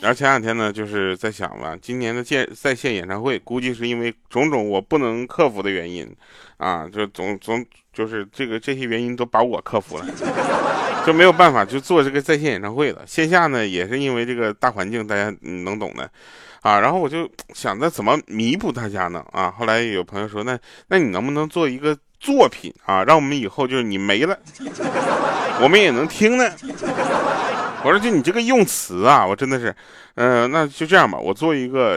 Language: Chinese